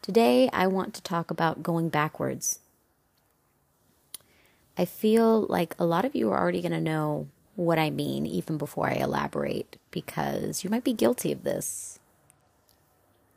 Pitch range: 115-180 Hz